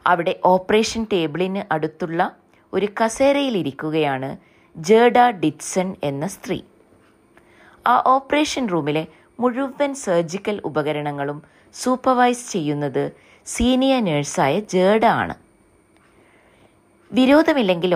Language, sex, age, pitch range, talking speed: Malayalam, female, 20-39, 150-245 Hz, 75 wpm